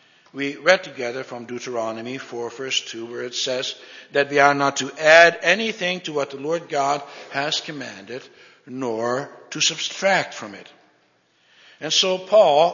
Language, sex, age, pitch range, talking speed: English, male, 60-79, 135-180 Hz, 155 wpm